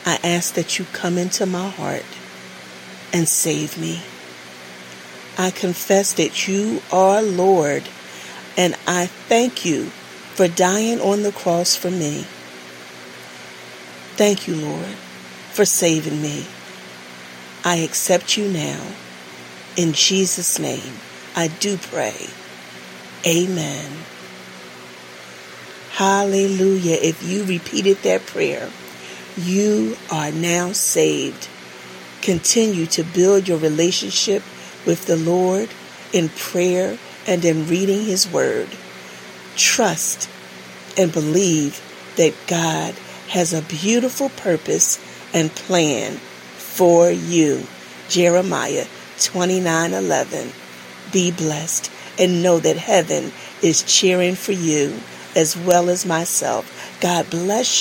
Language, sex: English, female